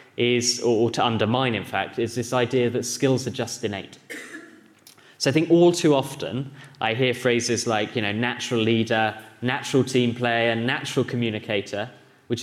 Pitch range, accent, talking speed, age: 115-130 Hz, British, 165 wpm, 10-29